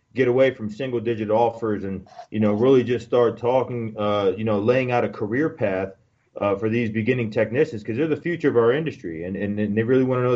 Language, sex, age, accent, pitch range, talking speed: English, male, 30-49, American, 110-140 Hz, 240 wpm